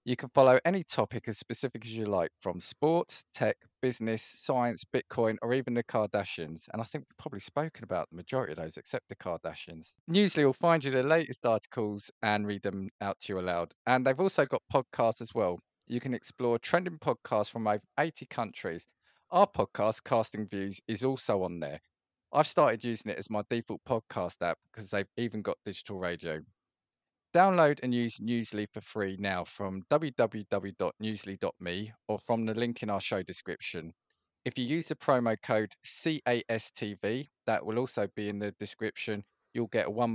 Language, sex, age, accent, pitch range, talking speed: English, male, 20-39, British, 105-130 Hz, 180 wpm